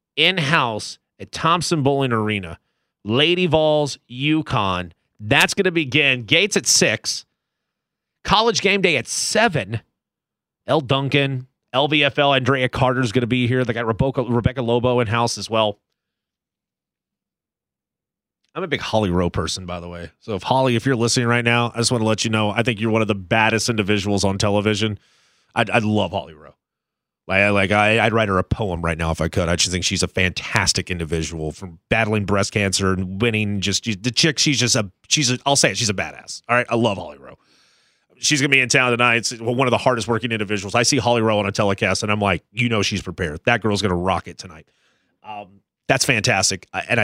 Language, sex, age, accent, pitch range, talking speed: English, male, 30-49, American, 100-130 Hz, 205 wpm